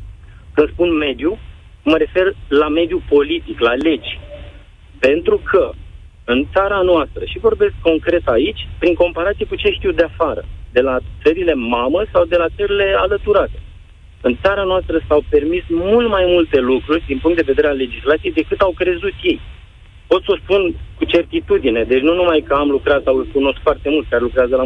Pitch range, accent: 150-230 Hz, native